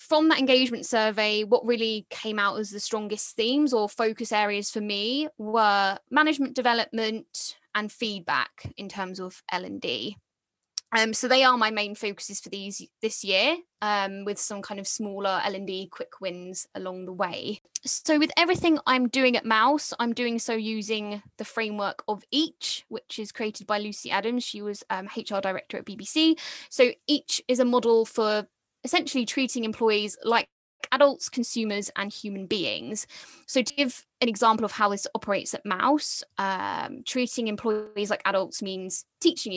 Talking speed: 165 wpm